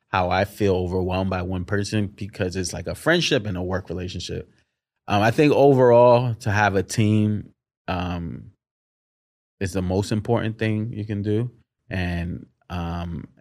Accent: American